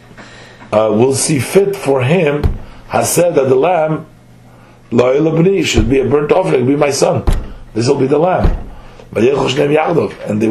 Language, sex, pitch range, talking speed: English, male, 125-180 Hz, 155 wpm